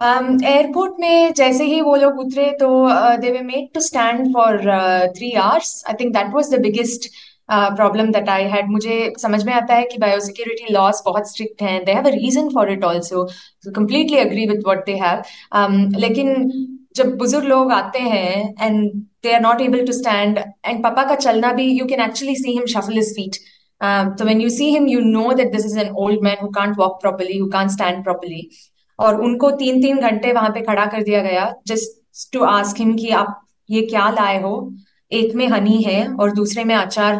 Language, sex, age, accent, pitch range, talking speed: Hindi, female, 20-39, native, 200-245 Hz, 200 wpm